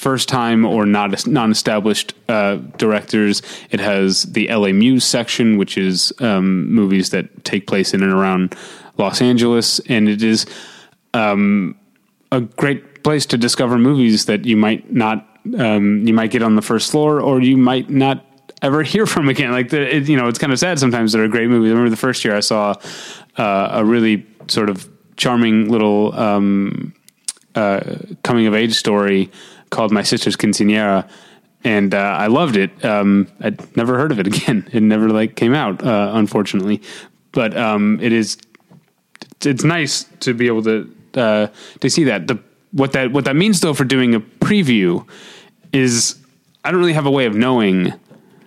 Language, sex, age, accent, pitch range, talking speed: English, male, 30-49, American, 105-130 Hz, 185 wpm